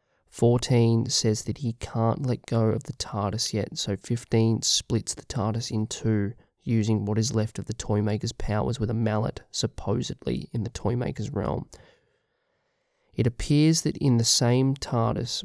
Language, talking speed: English, 160 wpm